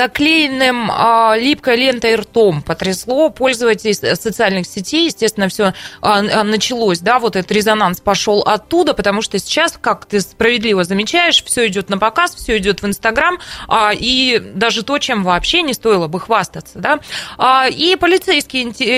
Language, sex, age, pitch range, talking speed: Russian, female, 20-39, 215-275 Hz, 150 wpm